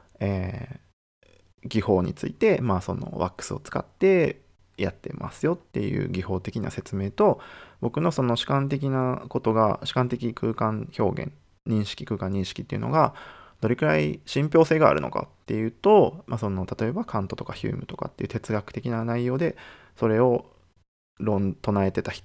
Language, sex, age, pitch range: Japanese, male, 20-39, 95-130 Hz